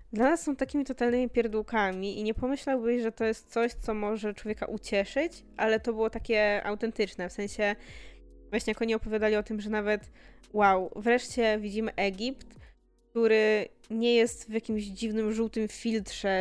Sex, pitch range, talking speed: female, 195-230 Hz, 160 wpm